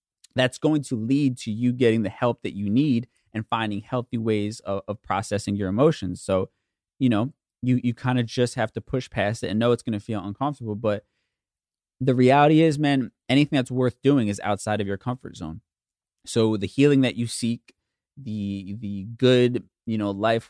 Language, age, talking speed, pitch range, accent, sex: English, 20-39, 200 wpm, 100-125 Hz, American, male